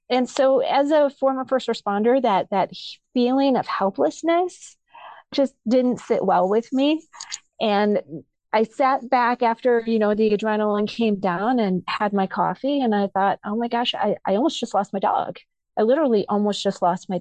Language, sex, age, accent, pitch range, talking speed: English, female, 30-49, American, 195-245 Hz, 180 wpm